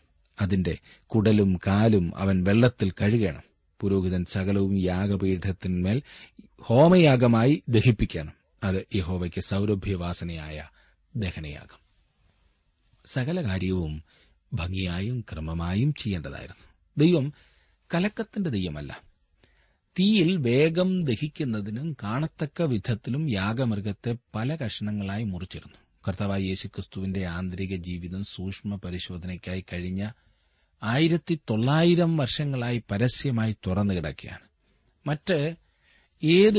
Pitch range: 90-125 Hz